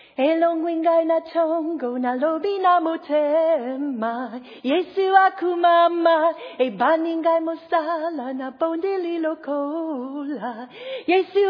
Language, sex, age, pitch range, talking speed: English, female, 40-59, 255-330 Hz, 100 wpm